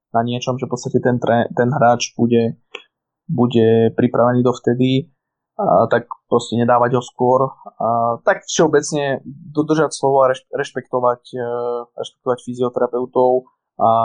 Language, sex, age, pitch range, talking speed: Slovak, male, 20-39, 120-130 Hz, 120 wpm